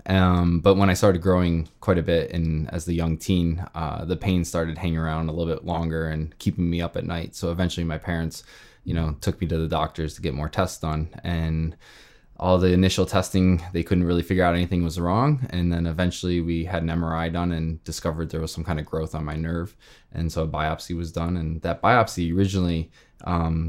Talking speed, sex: 225 wpm, male